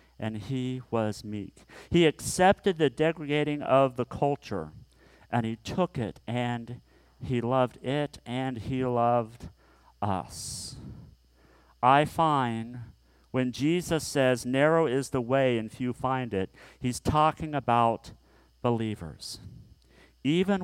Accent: American